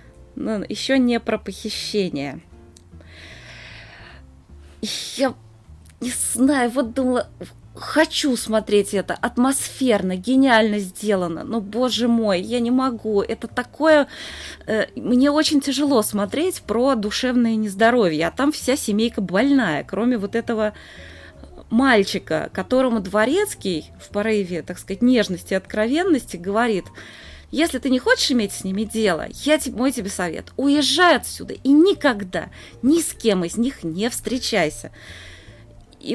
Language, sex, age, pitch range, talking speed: Russian, female, 20-39, 185-255 Hz, 120 wpm